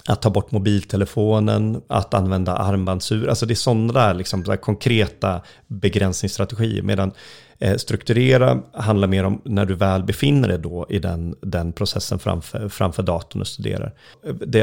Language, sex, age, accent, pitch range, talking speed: English, male, 30-49, Swedish, 95-110 Hz, 145 wpm